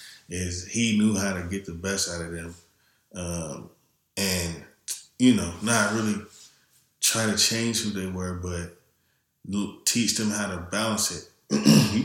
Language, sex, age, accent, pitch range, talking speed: English, male, 20-39, American, 85-105 Hz, 155 wpm